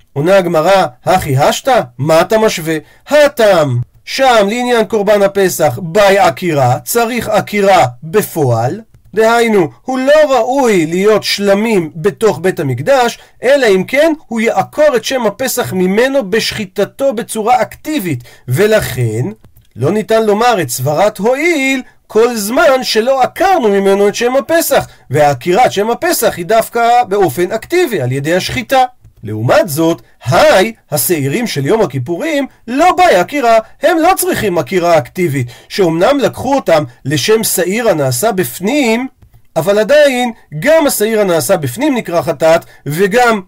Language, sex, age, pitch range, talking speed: Hebrew, male, 40-59, 160-245 Hz, 130 wpm